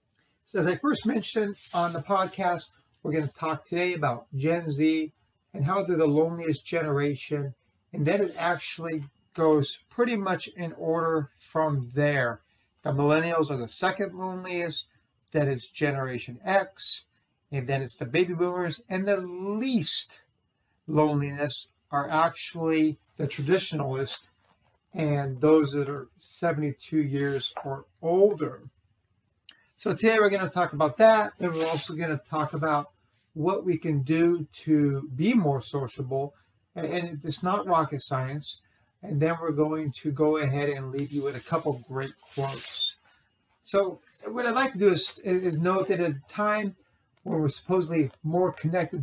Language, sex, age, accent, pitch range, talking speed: English, male, 60-79, American, 140-175 Hz, 155 wpm